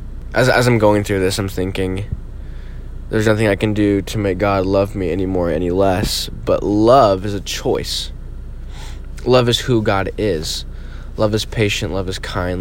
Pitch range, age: 80-110 Hz, 20-39